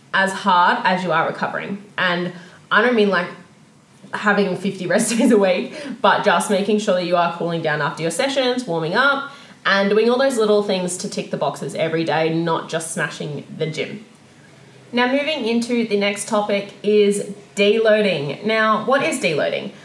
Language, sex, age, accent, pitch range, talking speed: English, female, 20-39, Australian, 185-220 Hz, 180 wpm